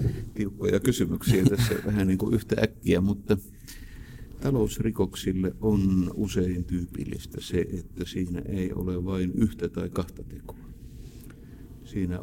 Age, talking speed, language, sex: 60-79, 115 wpm, Finnish, male